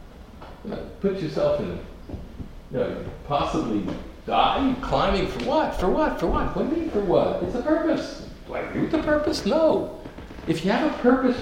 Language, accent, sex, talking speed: English, American, male, 180 wpm